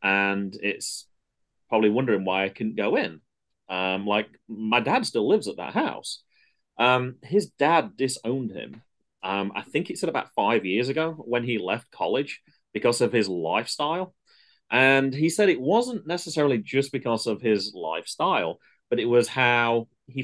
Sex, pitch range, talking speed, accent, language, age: male, 100-130 Hz, 165 wpm, British, English, 30-49